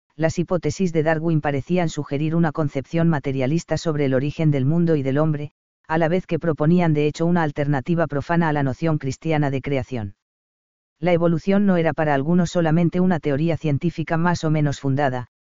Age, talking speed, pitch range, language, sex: 40-59, 185 wpm, 145-165 Hz, Spanish, female